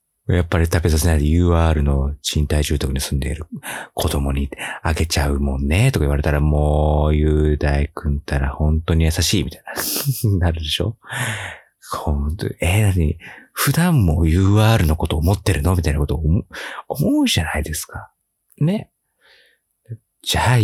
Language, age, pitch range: Japanese, 40-59, 75-105 Hz